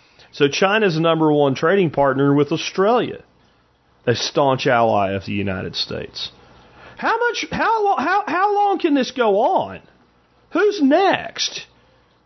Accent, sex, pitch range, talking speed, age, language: American, male, 140-215 Hz, 135 wpm, 40-59, English